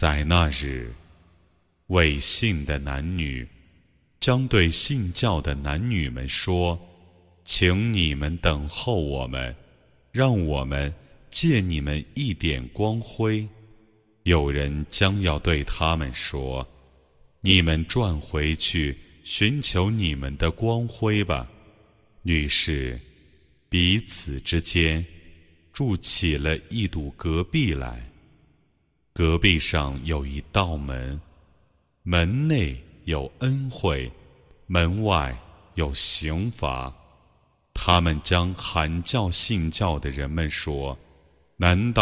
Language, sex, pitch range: Arabic, male, 70-95 Hz